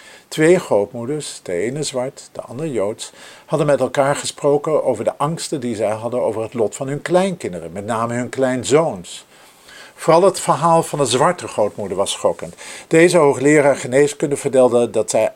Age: 50-69